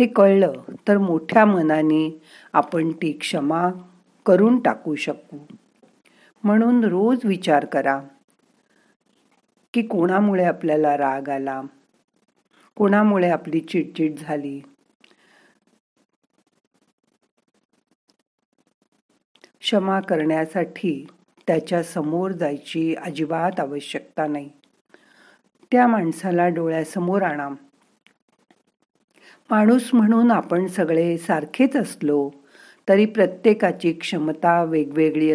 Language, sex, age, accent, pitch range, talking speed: Marathi, female, 50-69, native, 155-200 Hz, 80 wpm